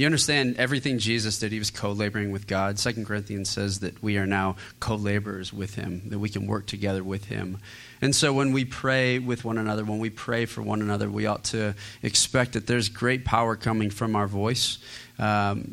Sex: male